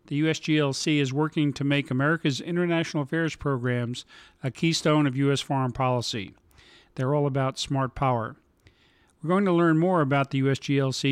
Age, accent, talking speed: 50-69, American, 155 wpm